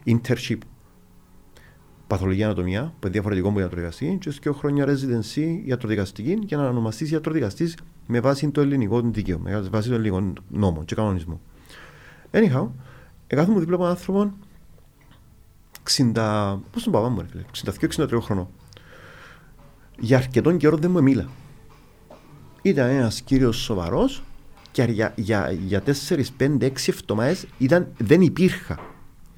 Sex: male